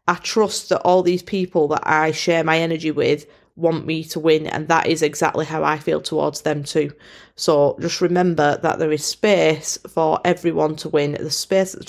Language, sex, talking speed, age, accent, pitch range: English, female, 205 wpm, 30-49, British, 155-190 Hz